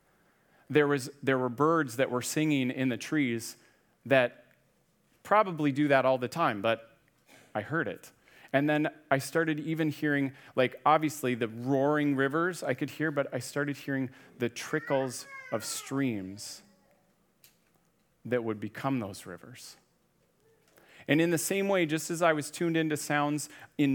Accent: American